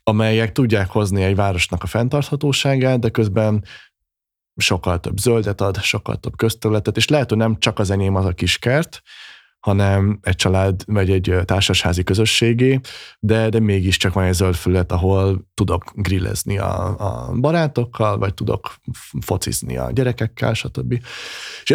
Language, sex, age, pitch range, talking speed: Hungarian, male, 20-39, 95-115 Hz, 145 wpm